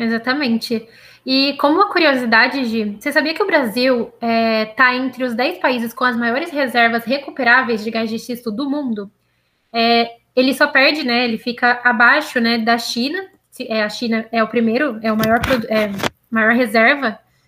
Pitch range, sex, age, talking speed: 230-285 Hz, female, 10-29, 175 wpm